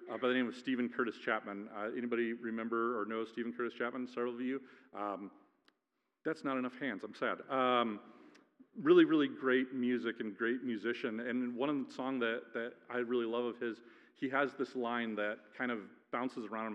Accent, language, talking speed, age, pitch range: American, English, 195 wpm, 40-59, 115-160 Hz